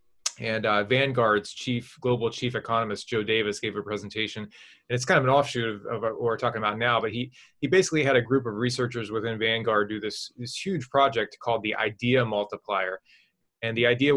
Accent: American